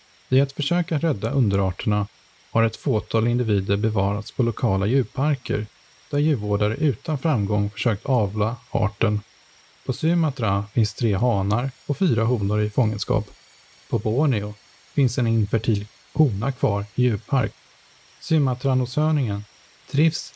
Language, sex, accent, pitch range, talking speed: Swedish, male, Norwegian, 105-140 Hz, 120 wpm